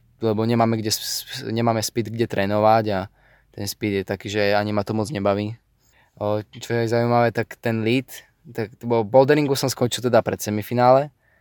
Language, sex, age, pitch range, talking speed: Slovak, male, 20-39, 105-115 Hz, 175 wpm